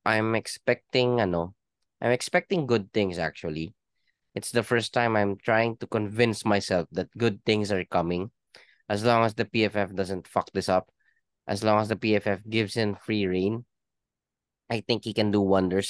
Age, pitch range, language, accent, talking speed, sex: 20-39, 95-115 Hz, Filipino, native, 175 wpm, male